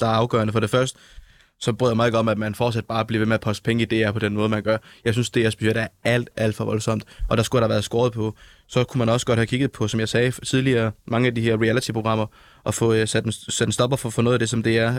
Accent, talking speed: native, 310 wpm